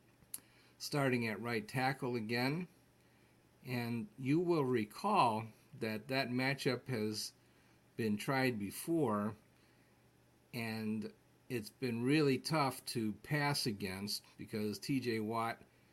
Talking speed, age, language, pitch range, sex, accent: 100 wpm, 50-69, English, 110-130 Hz, male, American